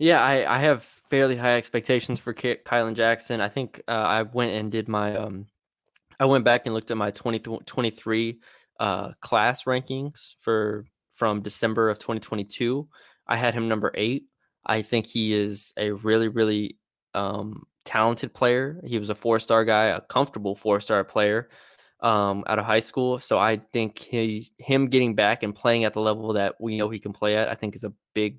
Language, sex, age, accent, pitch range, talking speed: English, male, 20-39, American, 105-120 Hz, 195 wpm